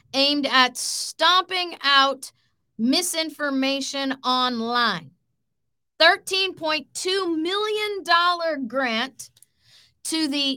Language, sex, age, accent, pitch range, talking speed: English, female, 40-59, American, 190-300 Hz, 60 wpm